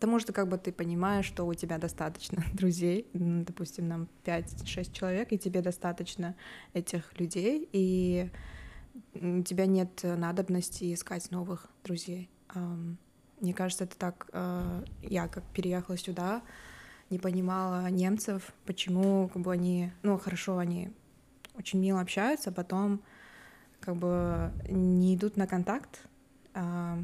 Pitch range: 175-190 Hz